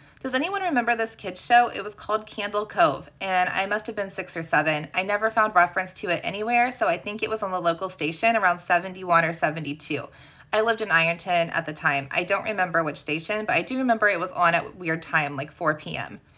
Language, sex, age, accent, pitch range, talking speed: English, female, 20-39, American, 165-210 Hz, 235 wpm